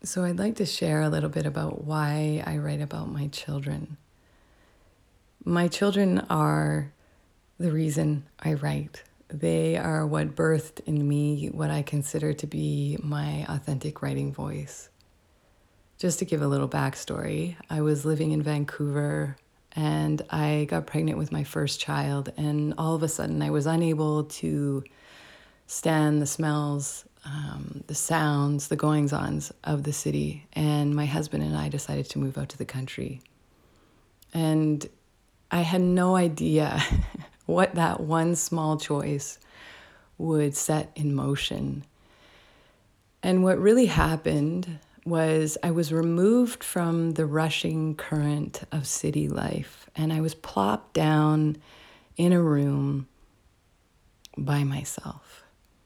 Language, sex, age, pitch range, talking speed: English, female, 20-39, 100-155 Hz, 135 wpm